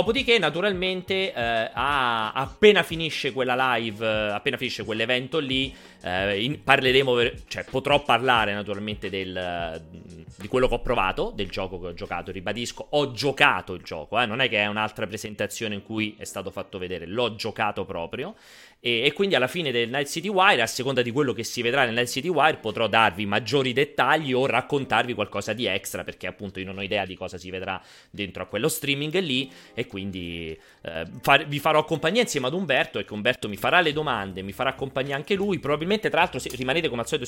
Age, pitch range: 30-49, 100-130 Hz